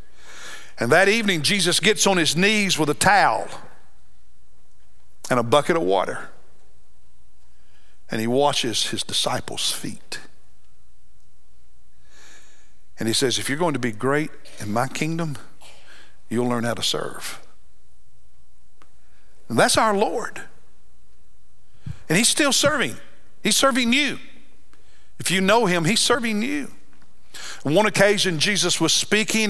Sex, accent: male, American